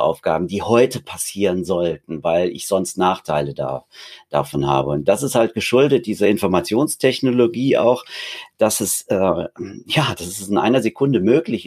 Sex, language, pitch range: male, German, 95-115 Hz